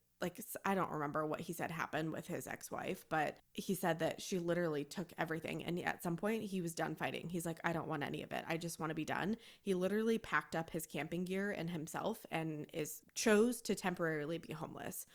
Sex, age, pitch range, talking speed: female, 20-39, 165-210 Hz, 225 wpm